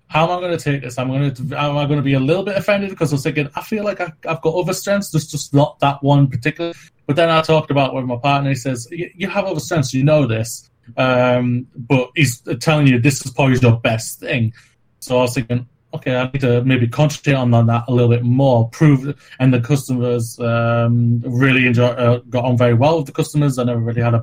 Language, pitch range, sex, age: English, 125-145 Hz, male, 20-39